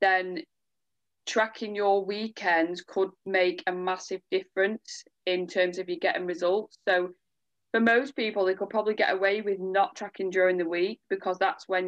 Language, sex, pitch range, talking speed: English, female, 180-210 Hz, 165 wpm